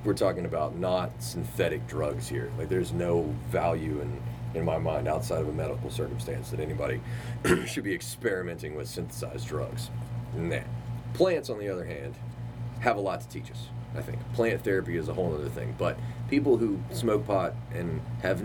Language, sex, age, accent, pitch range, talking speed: English, male, 30-49, American, 100-120 Hz, 180 wpm